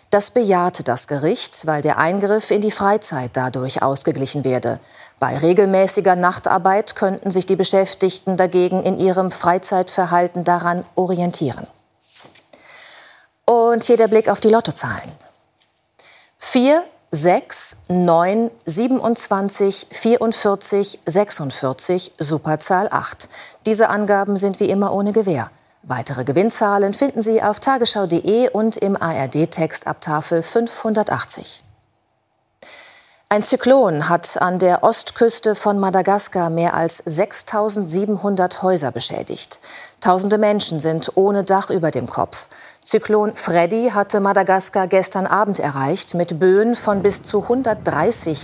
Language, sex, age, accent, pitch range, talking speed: German, female, 40-59, German, 170-210 Hz, 115 wpm